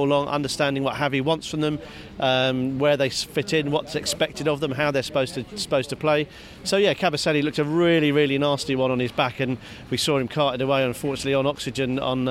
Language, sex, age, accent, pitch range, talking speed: English, male, 40-59, British, 135-165 Hz, 220 wpm